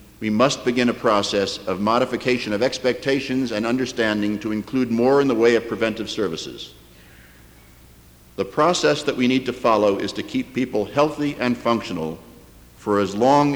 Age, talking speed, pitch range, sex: 60-79, 165 wpm, 80-130 Hz, male